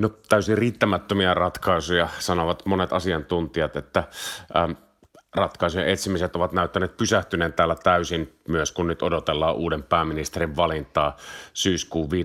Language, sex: Finnish, male